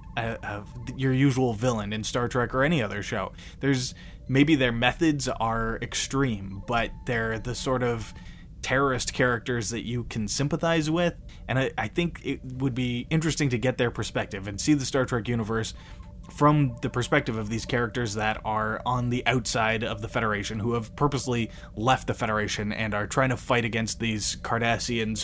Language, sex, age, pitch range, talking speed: English, male, 20-39, 110-130 Hz, 175 wpm